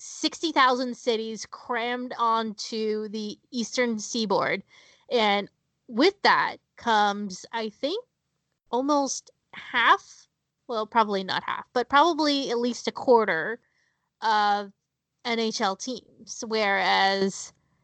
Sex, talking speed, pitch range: female, 100 wpm, 215-270 Hz